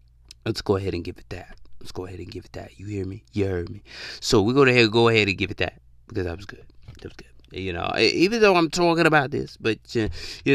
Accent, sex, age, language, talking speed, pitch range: American, male, 20-39, English, 265 wpm, 90-125 Hz